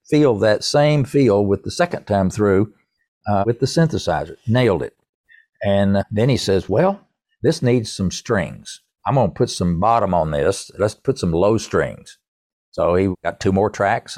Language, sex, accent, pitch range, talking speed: English, male, American, 90-125 Hz, 180 wpm